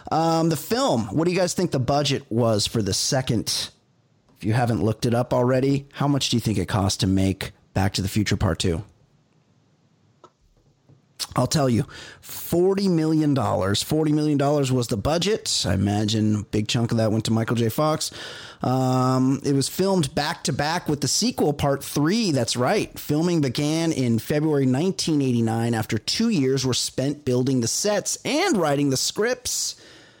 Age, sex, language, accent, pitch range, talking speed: 30-49, male, English, American, 115-155 Hz, 175 wpm